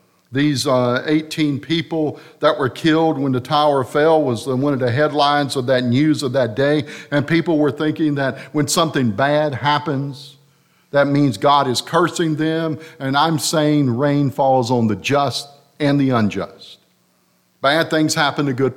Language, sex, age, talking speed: English, male, 50-69, 170 wpm